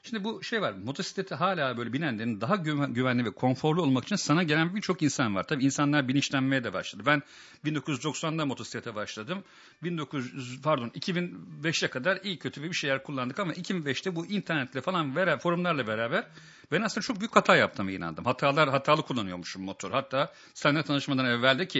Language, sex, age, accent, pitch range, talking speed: English, male, 50-69, Turkish, 125-170 Hz, 160 wpm